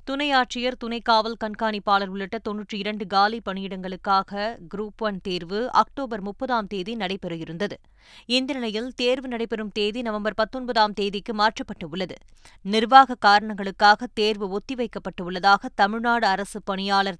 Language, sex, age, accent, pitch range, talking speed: Tamil, female, 20-39, native, 195-235 Hz, 120 wpm